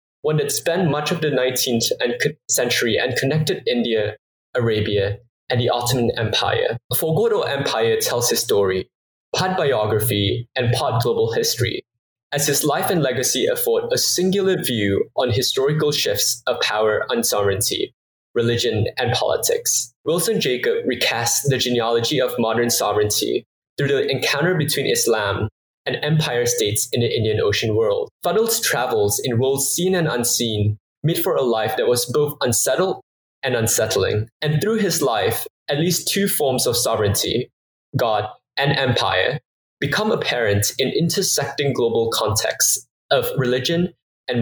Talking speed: 145 wpm